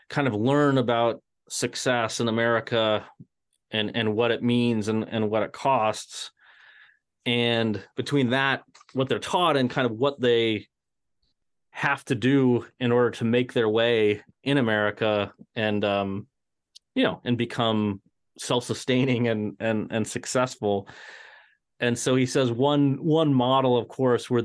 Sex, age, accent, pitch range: male, 30-49, American, 105-120 Hz